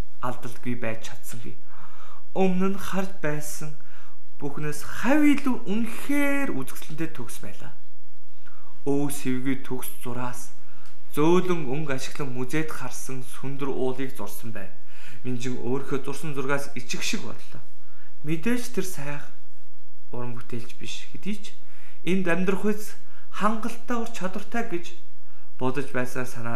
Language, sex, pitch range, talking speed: English, male, 125-185 Hz, 55 wpm